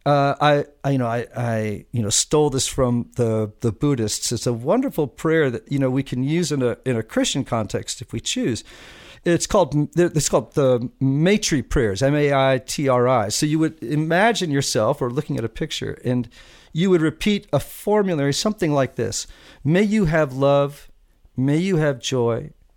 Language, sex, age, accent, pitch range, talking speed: English, male, 50-69, American, 125-160 Hz, 180 wpm